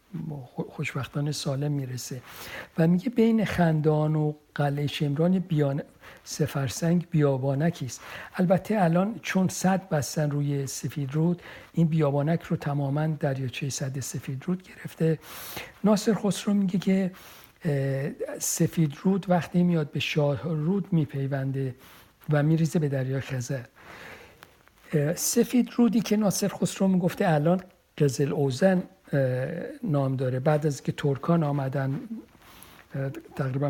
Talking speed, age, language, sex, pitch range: 110 wpm, 60-79, Persian, male, 140-175 Hz